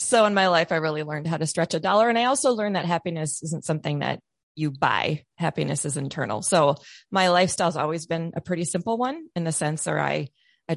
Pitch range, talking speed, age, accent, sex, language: 145-185 Hz, 230 wpm, 30-49, American, female, English